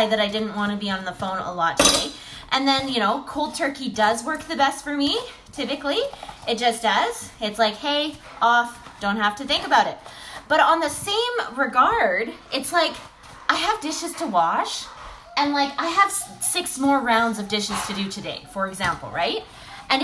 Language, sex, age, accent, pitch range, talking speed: English, female, 20-39, American, 235-320 Hz, 200 wpm